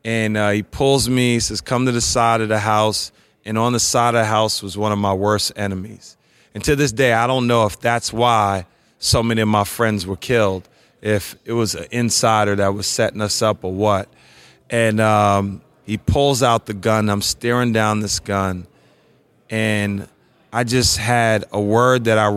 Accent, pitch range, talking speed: American, 100-120 Hz, 205 wpm